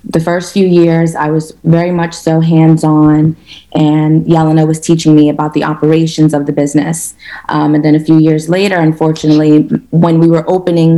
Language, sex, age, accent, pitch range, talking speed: English, female, 20-39, American, 155-175 Hz, 180 wpm